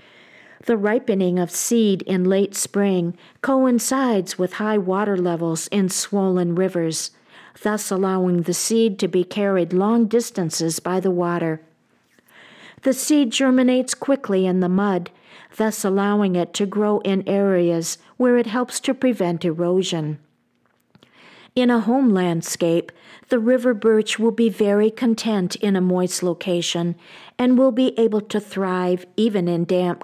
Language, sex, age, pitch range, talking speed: English, female, 50-69, 180-225 Hz, 140 wpm